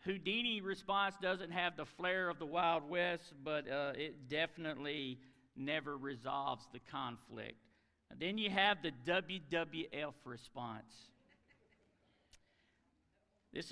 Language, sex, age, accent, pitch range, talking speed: English, male, 50-69, American, 125-150 Hz, 110 wpm